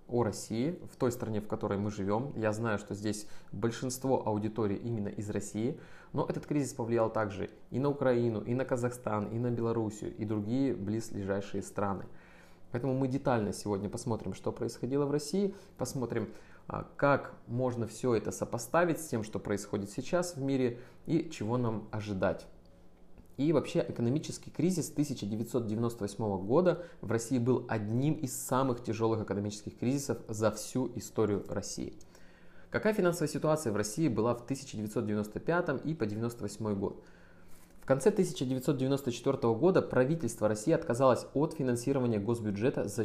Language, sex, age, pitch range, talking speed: Russian, male, 20-39, 110-135 Hz, 145 wpm